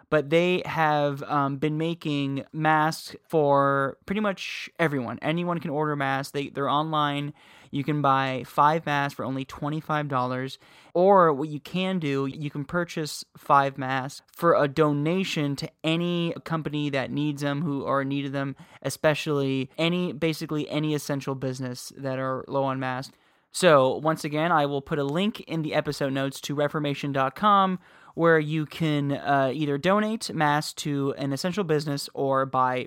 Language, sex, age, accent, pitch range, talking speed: English, male, 20-39, American, 140-170 Hz, 160 wpm